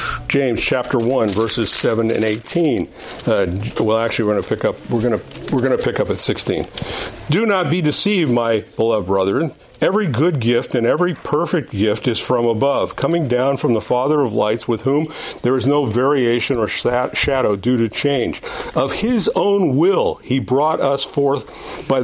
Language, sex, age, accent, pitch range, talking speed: English, male, 50-69, American, 120-175 Hz, 180 wpm